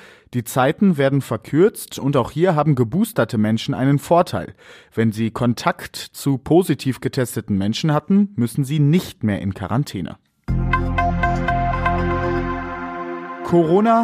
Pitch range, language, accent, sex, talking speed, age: 110-150 Hz, German, German, male, 115 wpm, 30-49